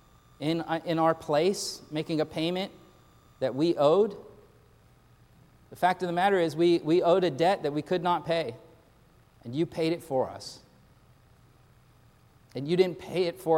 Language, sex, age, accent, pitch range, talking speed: English, male, 40-59, American, 125-155 Hz, 170 wpm